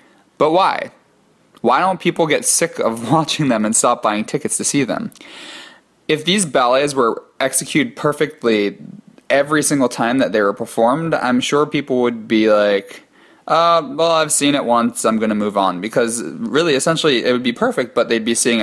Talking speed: 185 wpm